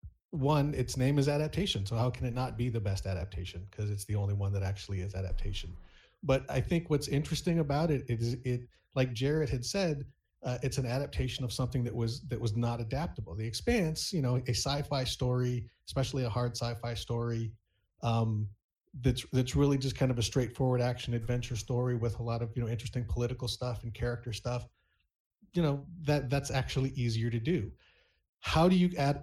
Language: English